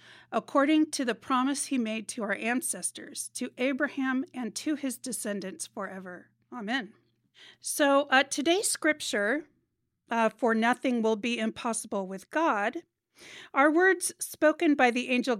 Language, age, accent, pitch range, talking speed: English, 40-59, American, 215-285 Hz, 135 wpm